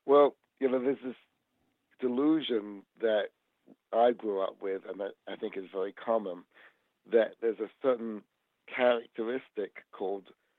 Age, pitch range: 60-79, 105-130 Hz